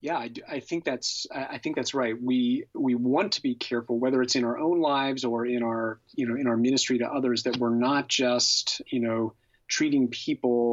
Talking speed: 215 wpm